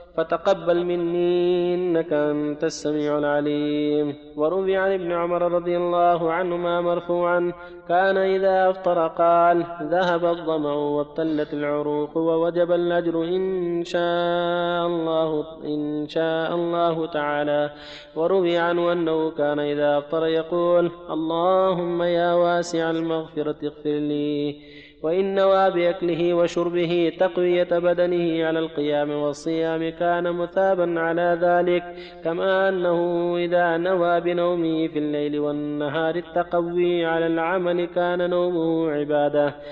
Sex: male